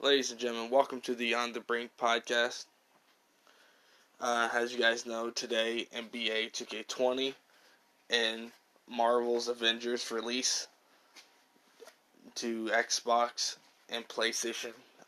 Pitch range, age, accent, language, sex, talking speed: 115-125 Hz, 20-39, American, English, male, 105 wpm